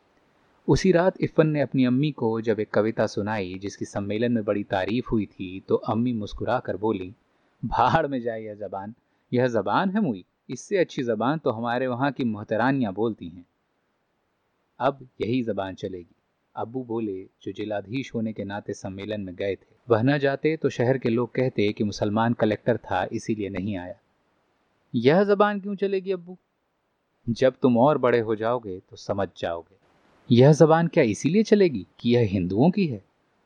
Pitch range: 105-135 Hz